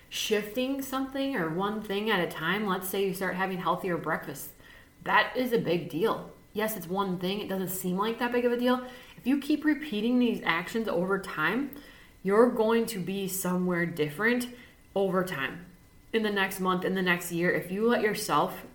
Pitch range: 175-215 Hz